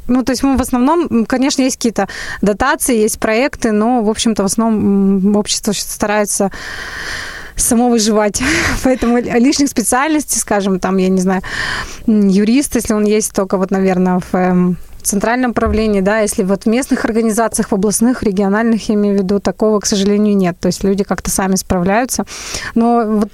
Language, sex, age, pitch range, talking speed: Russian, female, 20-39, 210-250 Hz, 165 wpm